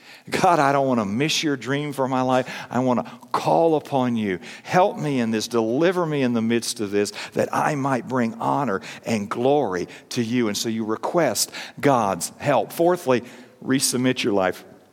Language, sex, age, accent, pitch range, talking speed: English, male, 50-69, American, 120-155 Hz, 190 wpm